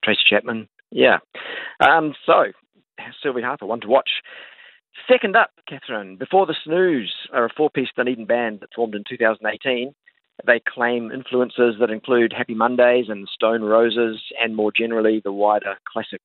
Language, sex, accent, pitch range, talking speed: English, male, Australian, 110-130 Hz, 150 wpm